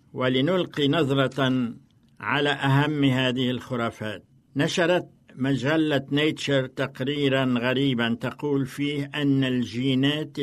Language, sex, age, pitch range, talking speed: Arabic, male, 60-79, 125-145 Hz, 85 wpm